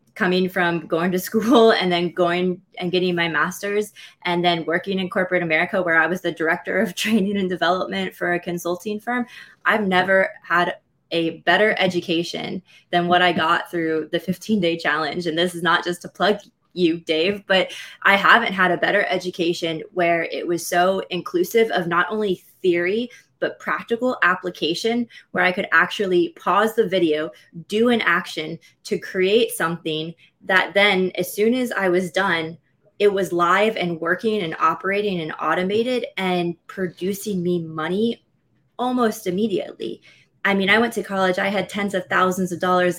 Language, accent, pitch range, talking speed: English, American, 170-205 Hz, 170 wpm